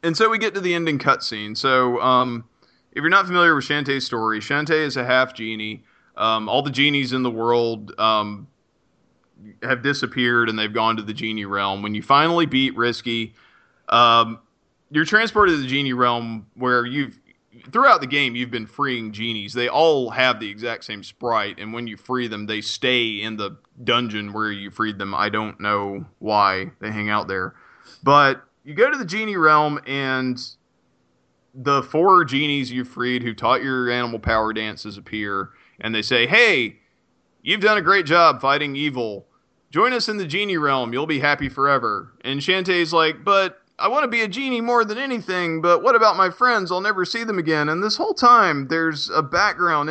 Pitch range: 110-175 Hz